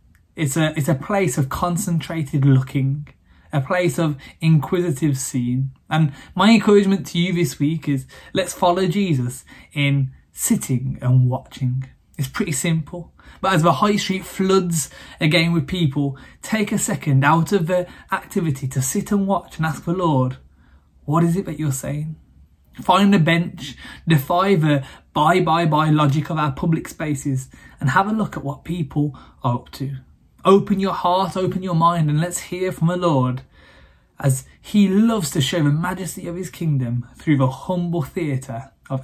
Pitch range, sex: 135-180 Hz, male